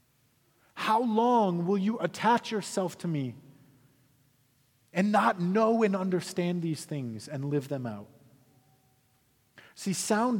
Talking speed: 120 wpm